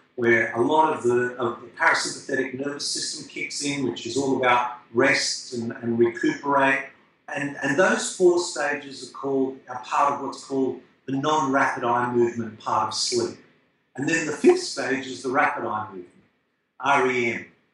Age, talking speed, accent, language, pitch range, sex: 50-69, 170 wpm, Australian, English, 115-145 Hz, male